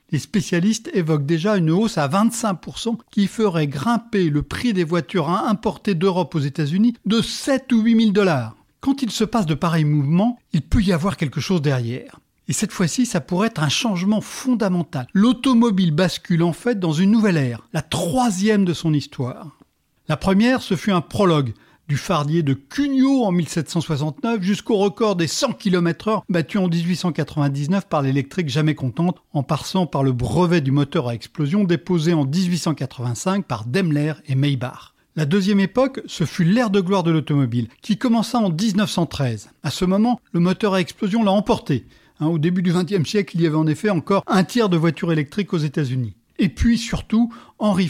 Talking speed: 185 wpm